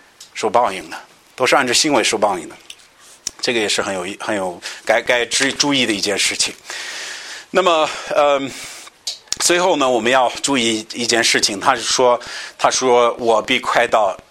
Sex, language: male, Chinese